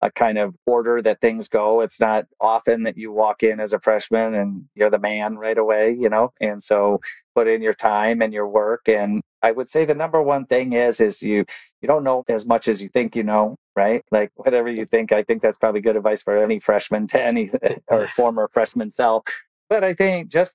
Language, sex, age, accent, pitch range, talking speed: English, male, 40-59, American, 105-130 Hz, 230 wpm